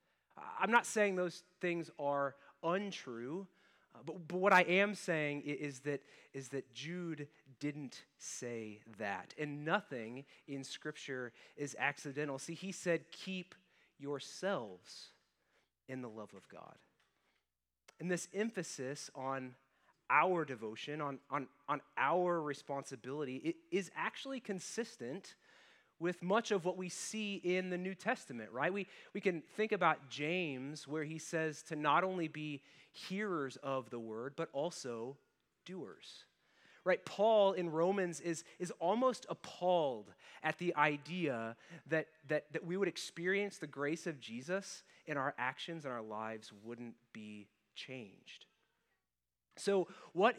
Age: 30-49